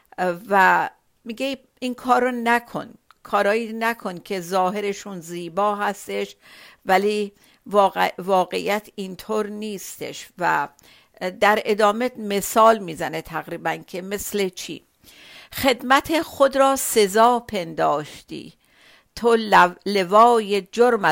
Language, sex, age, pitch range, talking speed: Persian, female, 50-69, 185-230 Hz, 95 wpm